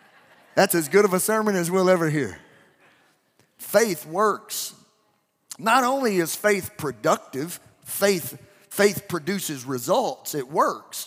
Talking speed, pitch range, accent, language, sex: 125 wpm, 155-200 Hz, American, English, male